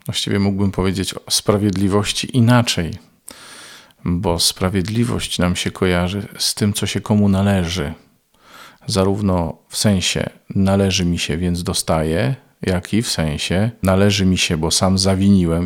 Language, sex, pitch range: Polish, male, 90-105 Hz